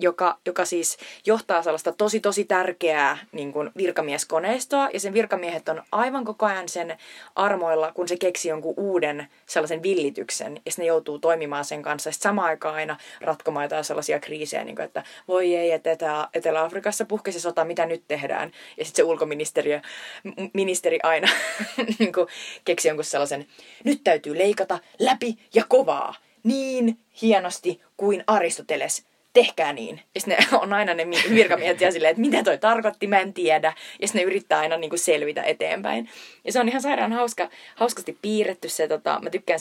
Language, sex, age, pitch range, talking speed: Finnish, female, 20-39, 155-200 Hz, 160 wpm